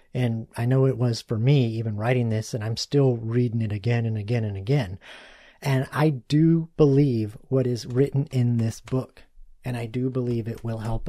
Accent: American